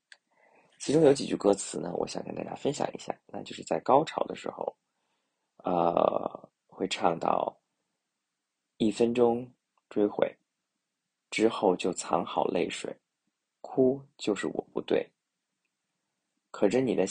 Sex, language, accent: male, Chinese, native